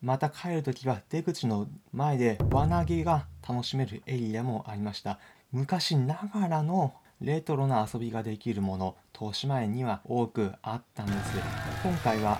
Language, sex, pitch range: Japanese, male, 110-155 Hz